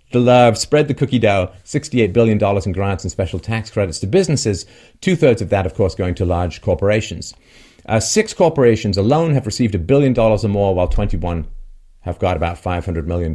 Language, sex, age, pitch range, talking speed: English, male, 40-59, 90-120 Hz, 200 wpm